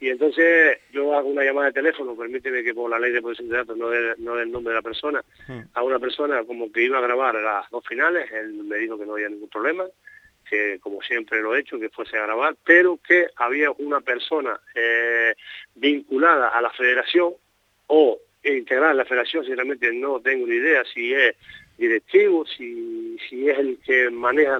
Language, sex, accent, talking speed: Spanish, male, Argentinian, 205 wpm